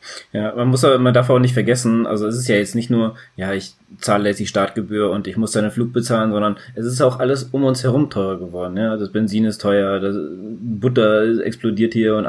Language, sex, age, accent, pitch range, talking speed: German, male, 20-39, German, 100-120 Hz, 235 wpm